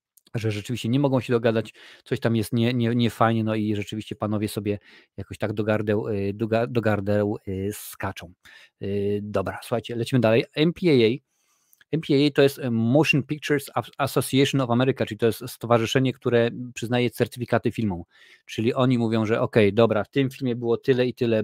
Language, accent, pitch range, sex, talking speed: Polish, native, 110-130 Hz, male, 155 wpm